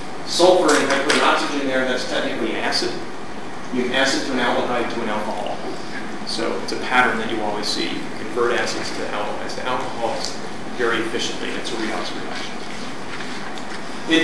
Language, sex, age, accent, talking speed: English, male, 40-59, American, 165 wpm